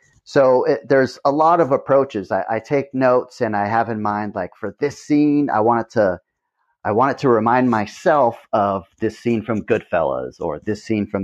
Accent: American